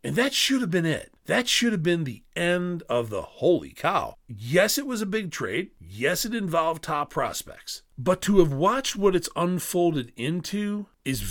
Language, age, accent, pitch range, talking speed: English, 40-59, American, 110-180 Hz, 190 wpm